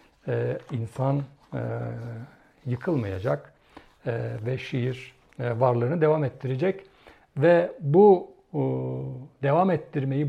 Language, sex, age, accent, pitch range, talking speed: Turkish, male, 60-79, native, 125-155 Hz, 95 wpm